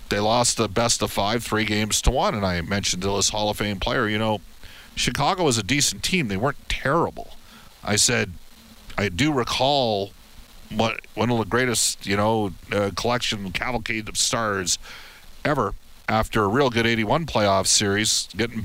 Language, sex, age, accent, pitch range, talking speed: English, male, 50-69, American, 100-125 Hz, 175 wpm